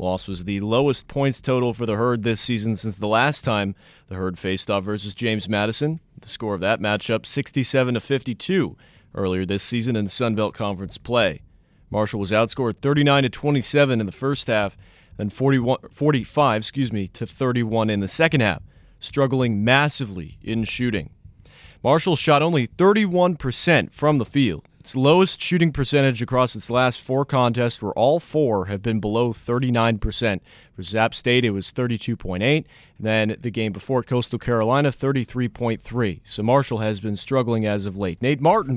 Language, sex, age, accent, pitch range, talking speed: English, male, 30-49, American, 105-135 Hz, 170 wpm